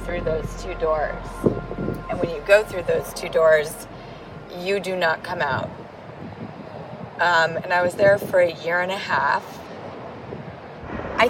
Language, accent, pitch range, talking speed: English, American, 165-210 Hz, 155 wpm